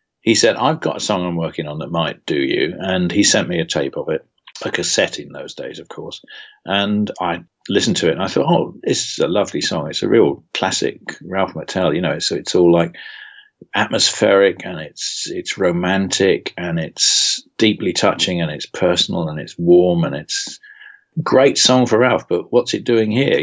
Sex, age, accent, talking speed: male, 40-59, British, 205 wpm